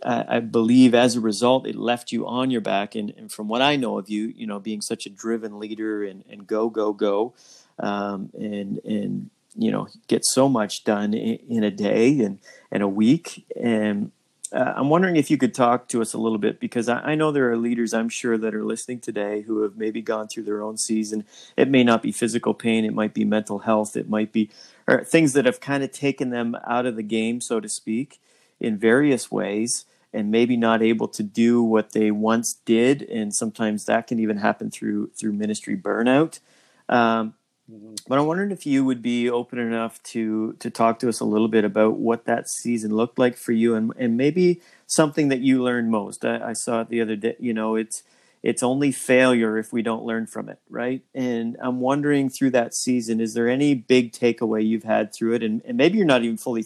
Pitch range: 110-125 Hz